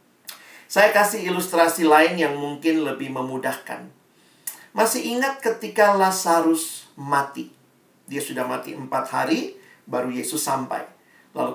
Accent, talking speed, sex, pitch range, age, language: native, 115 wpm, male, 145-225 Hz, 50-69, Indonesian